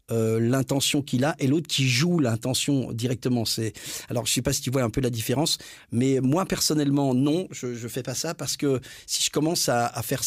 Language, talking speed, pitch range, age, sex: French, 230 wpm, 130-165 Hz, 40-59, male